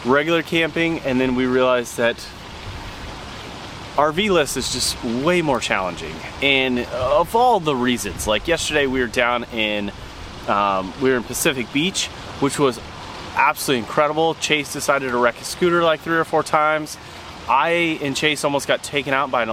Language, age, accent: English, 30-49, American